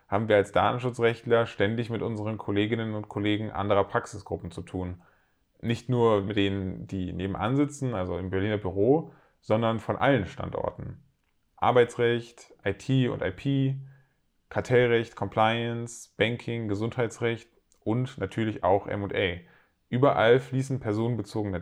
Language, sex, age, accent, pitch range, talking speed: German, male, 20-39, German, 100-125 Hz, 120 wpm